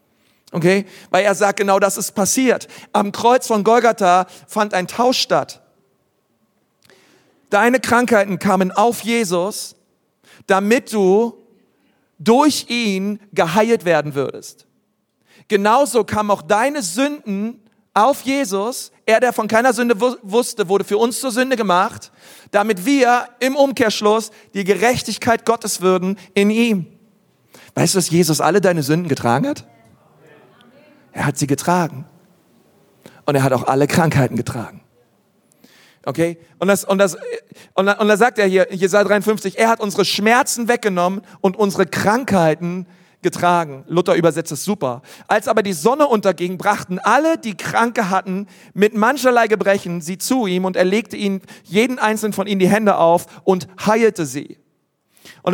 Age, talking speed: 40-59, 145 wpm